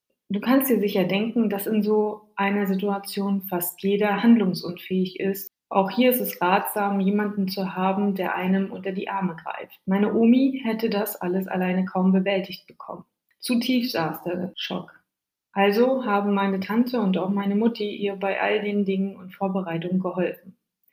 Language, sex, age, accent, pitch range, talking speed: German, female, 20-39, German, 185-215 Hz, 165 wpm